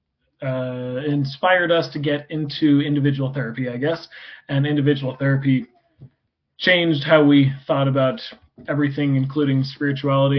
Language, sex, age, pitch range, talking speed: English, male, 20-39, 135-155 Hz, 120 wpm